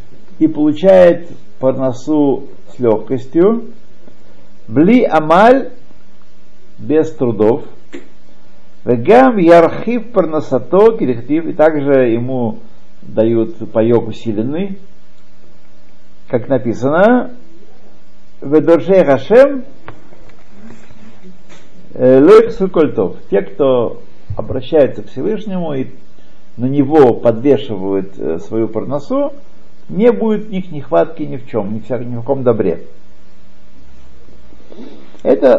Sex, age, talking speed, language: male, 50-69, 85 wpm, Russian